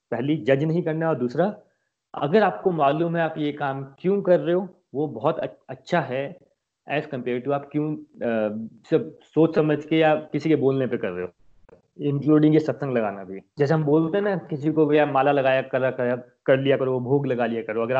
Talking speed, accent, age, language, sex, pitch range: 205 wpm, native, 30-49, Hindi, male, 130-160 Hz